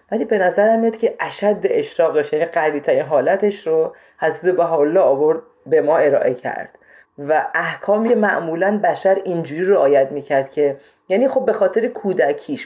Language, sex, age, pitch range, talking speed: Persian, female, 30-49, 150-225 Hz, 150 wpm